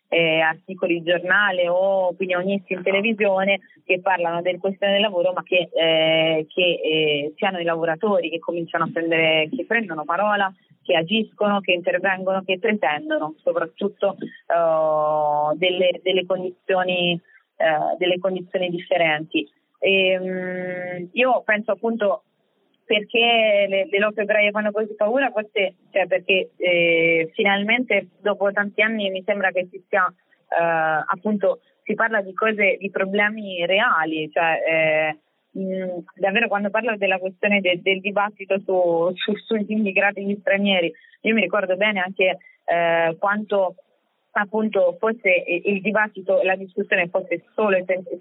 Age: 20-39